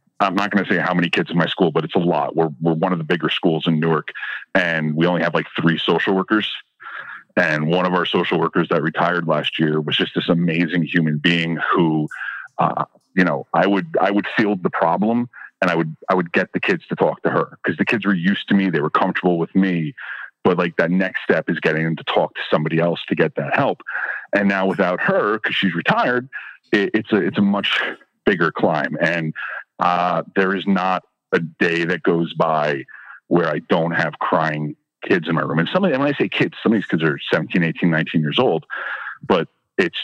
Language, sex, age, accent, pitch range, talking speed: English, male, 30-49, American, 80-95 Hz, 230 wpm